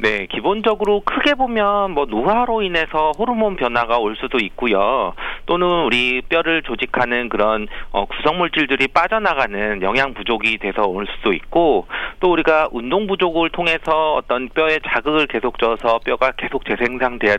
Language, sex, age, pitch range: Korean, male, 40-59, 115-165 Hz